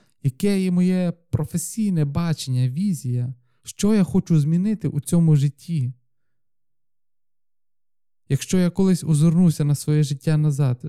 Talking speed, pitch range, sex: 115 wpm, 130-170 Hz, male